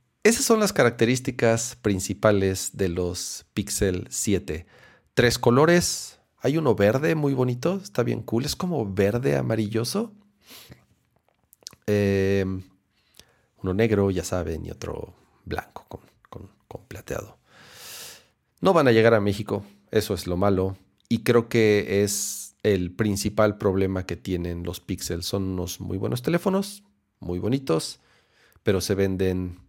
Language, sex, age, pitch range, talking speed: Spanish, male, 40-59, 95-120 Hz, 135 wpm